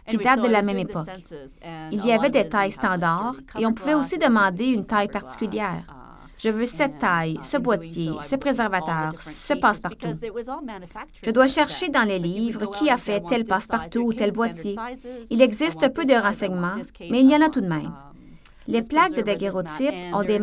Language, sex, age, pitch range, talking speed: French, female, 30-49, 190-250 Hz, 185 wpm